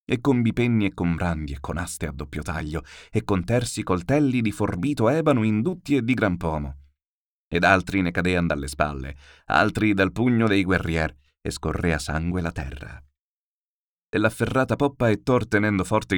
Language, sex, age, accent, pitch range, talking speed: Italian, male, 30-49, native, 80-115 Hz, 170 wpm